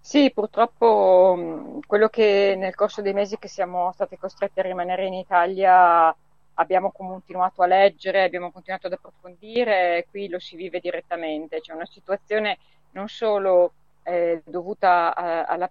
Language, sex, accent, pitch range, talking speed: Italian, female, native, 175-195 Hz, 150 wpm